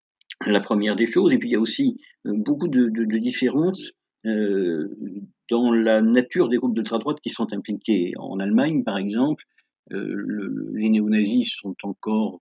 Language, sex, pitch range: French, male, 100-125 Hz